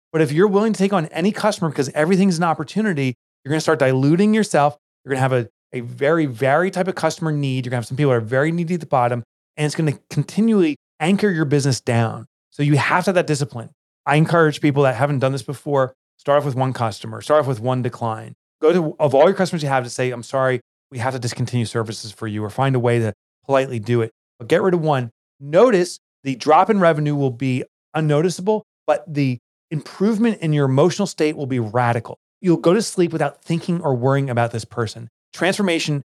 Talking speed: 225 wpm